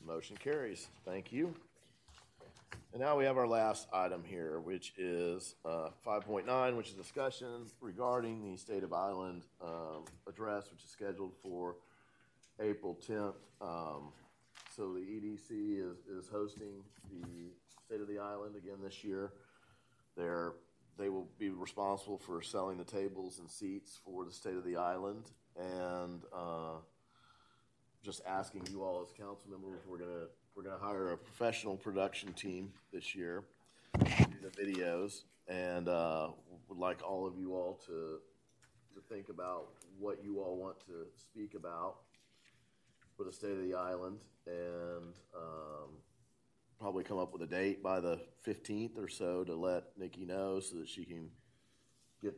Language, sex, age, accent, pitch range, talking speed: English, male, 40-59, American, 90-100 Hz, 155 wpm